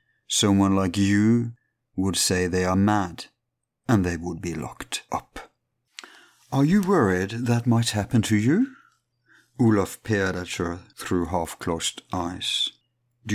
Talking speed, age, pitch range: 135 wpm, 50-69, 95-125 Hz